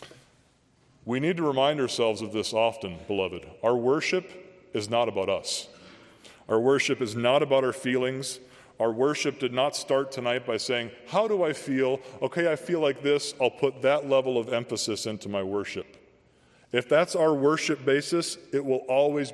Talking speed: 175 wpm